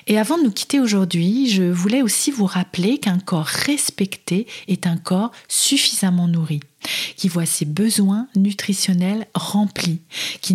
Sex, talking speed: female, 150 wpm